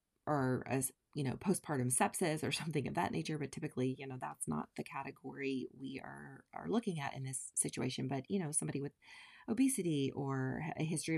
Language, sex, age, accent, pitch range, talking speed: English, female, 20-39, American, 130-175 Hz, 195 wpm